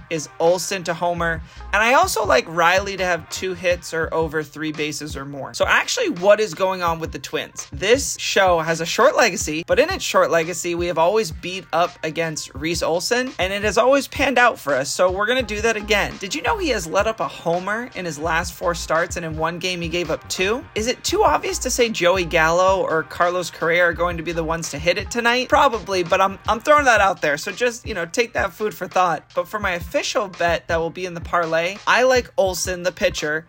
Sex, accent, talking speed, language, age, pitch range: male, American, 245 wpm, English, 30-49, 165-210 Hz